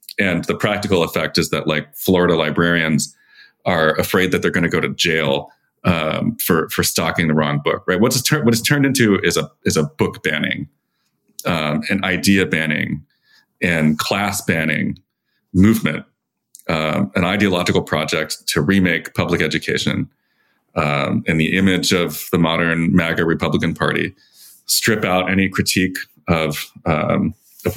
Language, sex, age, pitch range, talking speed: English, male, 30-49, 80-100 Hz, 155 wpm